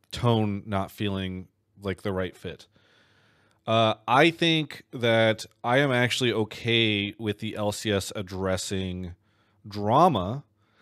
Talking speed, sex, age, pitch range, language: 110 wpm, male, 30-49, 100-115 Hz, English